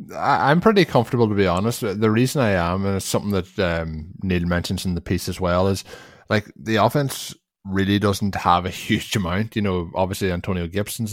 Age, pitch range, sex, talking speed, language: 20-39, 90-110 Hz, male, 200 wpm, English